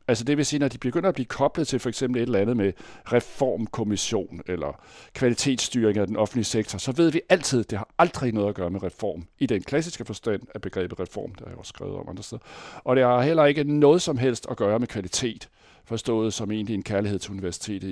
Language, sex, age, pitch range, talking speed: Danish, male, 60-79, 105-135 Hz, 245 wpm